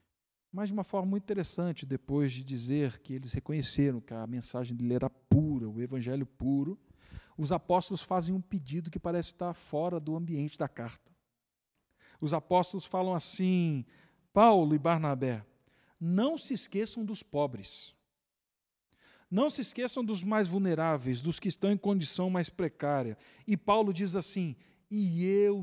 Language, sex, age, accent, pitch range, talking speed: Portuguese, male, 50-69, Brazilian, 145-200 Hz, 150 wpm